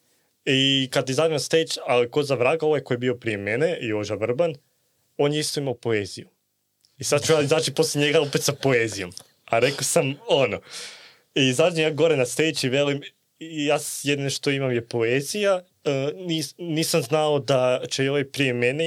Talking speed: 175 wpm